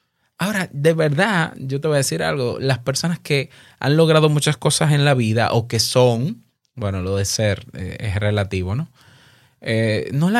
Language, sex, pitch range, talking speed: Spanish, male, 125-160 Hz, 190 wpm